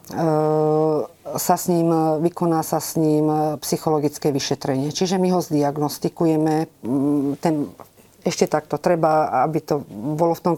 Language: Slovak